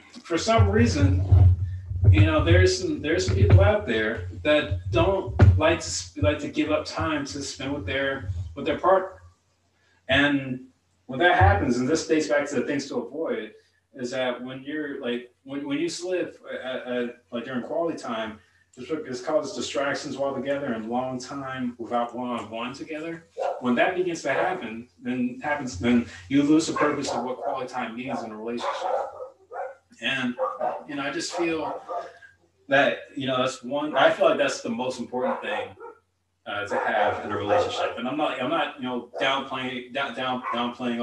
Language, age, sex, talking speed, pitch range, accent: English, 30-49, male, 185 wpm, 110-155 Hz, American